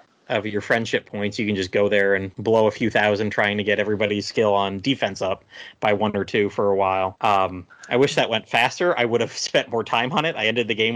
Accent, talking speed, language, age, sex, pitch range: American, 255 wpm, English, 30-49, male, 110-135 Hz